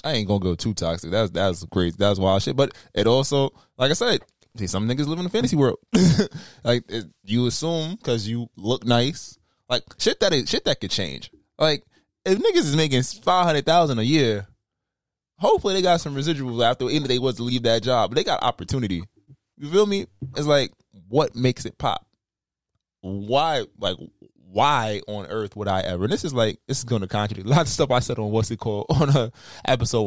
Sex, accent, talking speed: male, American, 215 wpm